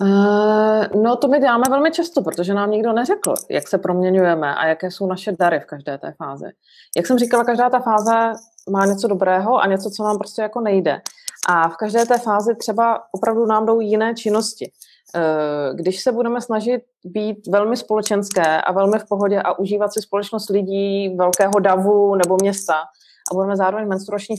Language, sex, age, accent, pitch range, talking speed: Czech, female, 30-49, native, 190-225 Hz, 180 wpm